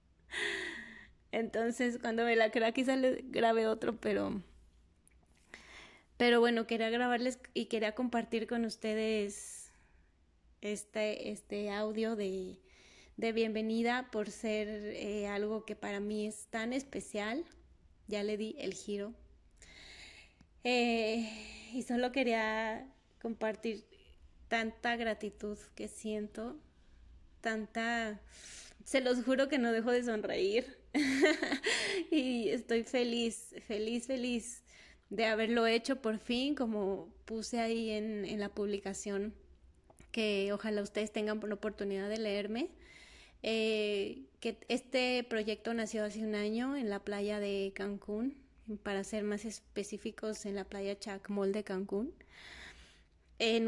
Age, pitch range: 20-39, 210-235 Hz